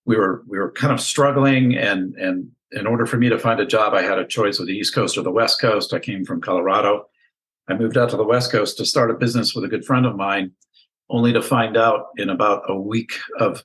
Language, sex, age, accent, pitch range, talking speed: English, male, 50-69, American, 105-140 Hz, 260 wpm